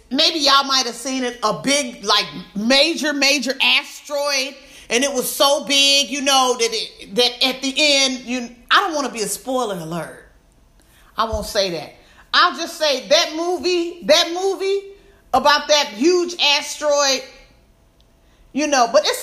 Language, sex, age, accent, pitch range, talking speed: English, female, 40-59, American, 225-305 Hz, 165 wpm